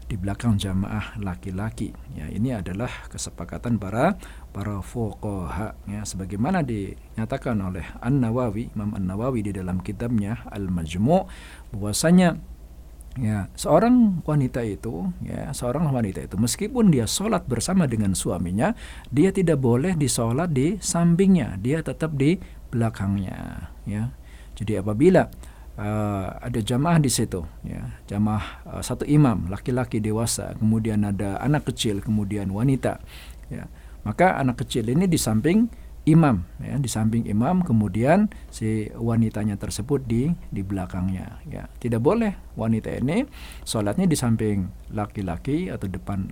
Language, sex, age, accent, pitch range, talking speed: Indonesian, male, 50-69, native, 100-130 Hz, 130 wpm